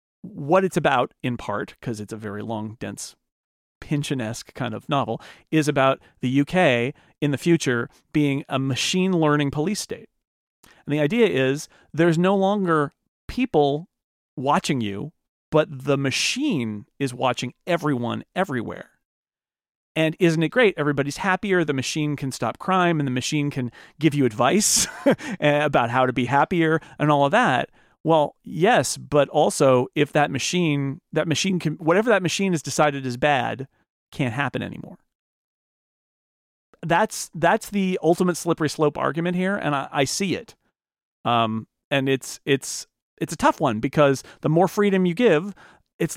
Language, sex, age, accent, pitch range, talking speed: English, male, 40-59, American, 135-180 Hz, 155 wpm